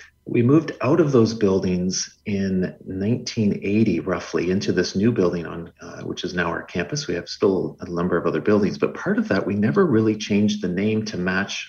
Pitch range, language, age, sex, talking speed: 90-110 Hz, English, 40-59, male, 205 wpm